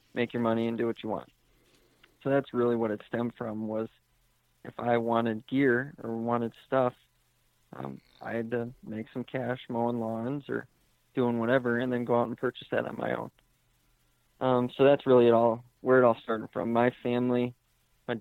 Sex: male